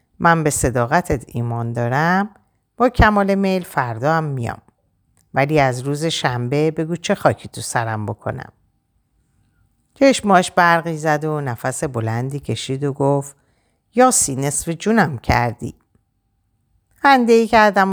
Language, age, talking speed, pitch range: Persian, 50-69, 125 wpm, 120-200 Hz